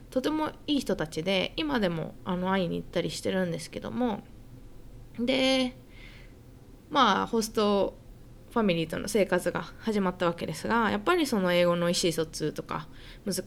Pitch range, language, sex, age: 175-250 Hz, Japanese, female, 20-39